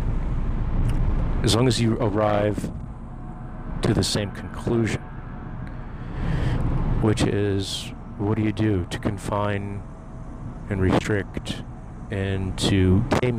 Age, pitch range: 40-59, 100-120 Hz